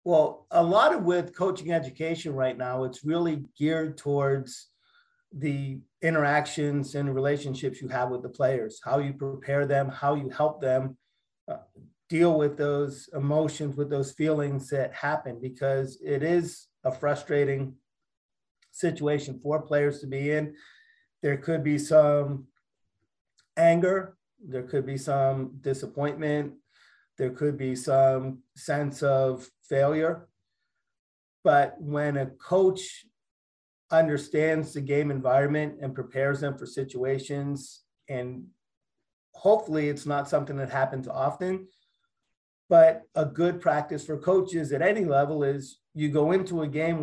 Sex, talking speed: male, 130 wpm